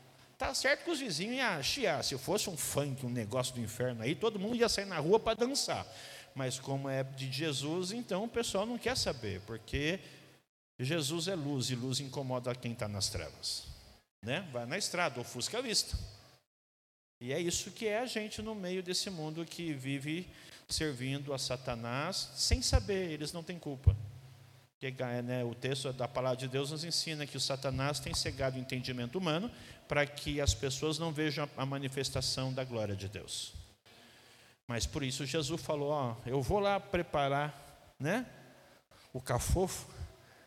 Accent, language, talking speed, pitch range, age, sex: Brazilian, Portuguese, 175 wpm, 125-165 Hz, 50-69, male